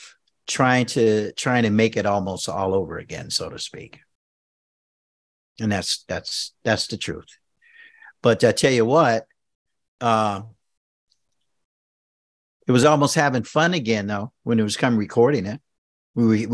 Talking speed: 145 wpm